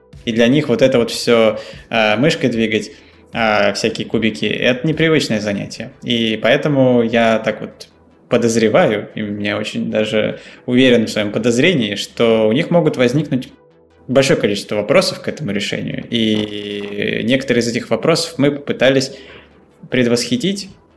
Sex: male